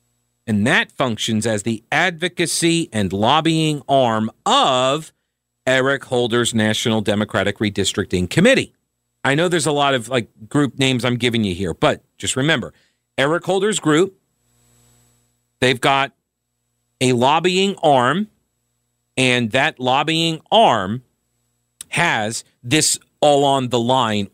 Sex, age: male, 40-59